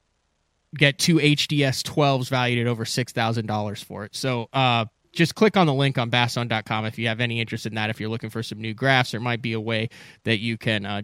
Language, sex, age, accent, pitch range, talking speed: English, male, 30-49, American, 115-145 Hz, 240 wpm